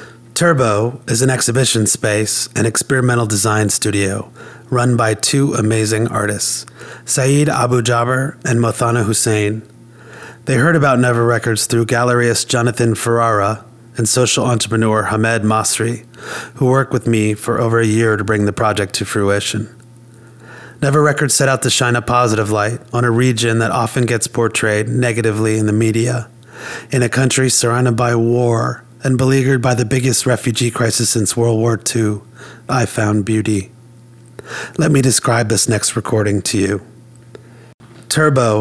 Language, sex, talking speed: English, male, 150 wpm